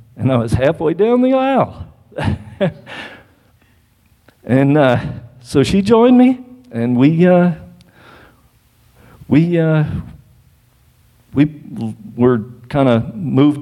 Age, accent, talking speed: 50-69, American, 100 wpm